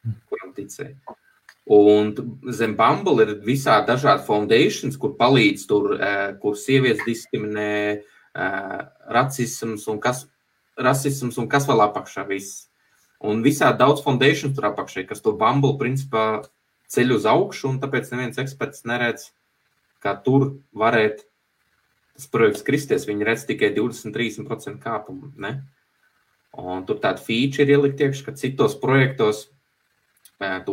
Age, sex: 20-39, male